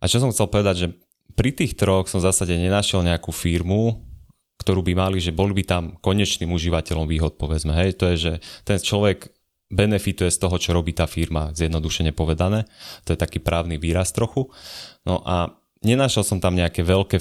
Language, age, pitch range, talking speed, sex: Slovak, 20-39, 80-95 Hz, 185 wpm, male